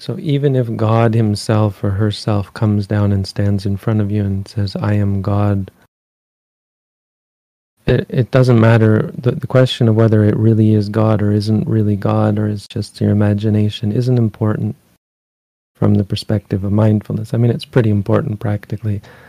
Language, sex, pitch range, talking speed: English, male, 105-125 Hz, 170 wpm